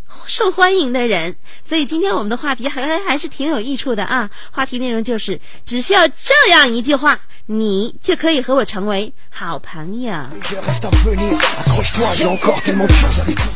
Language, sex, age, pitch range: Chinese, female, 30-49, 195-275 Hz